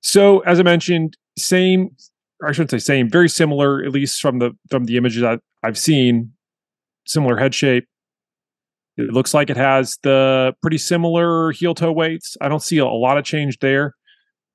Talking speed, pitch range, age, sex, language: 175 wpm, 120-160 Hz, 30-49, male, English